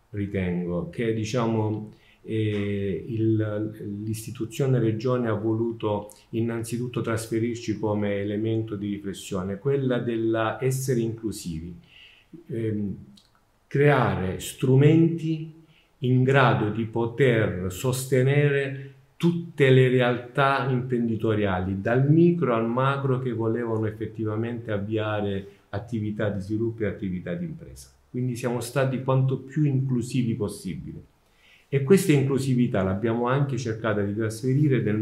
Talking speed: 105 wpm